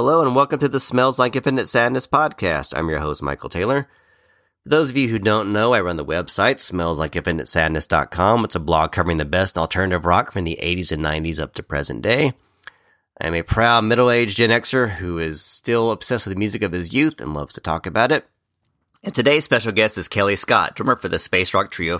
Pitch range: 90-125 Hz